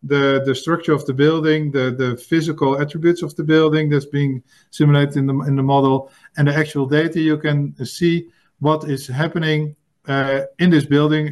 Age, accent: 50-69, Dutch